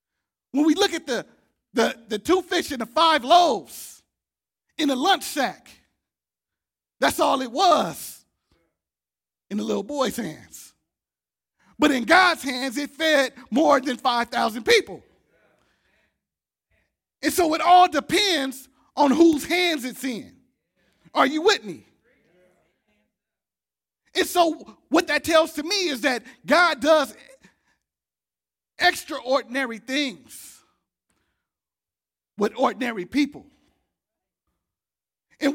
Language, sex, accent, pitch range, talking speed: English, male, American, 205-310 Hz, 115 wpm